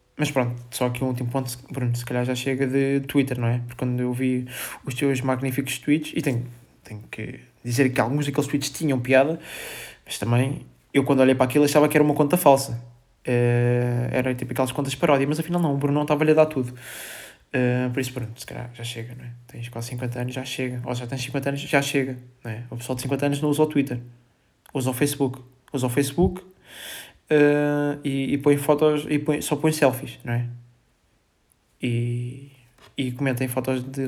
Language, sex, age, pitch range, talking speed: Portuguese, male, 20-39, 125-145 Hz, 215 wpm